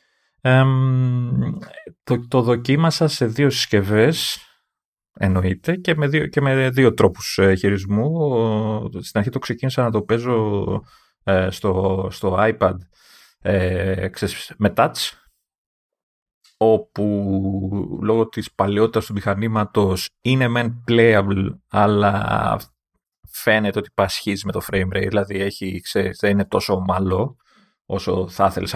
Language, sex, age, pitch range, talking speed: Greek, male, 30-49, 95-120 Hz, 115 wpm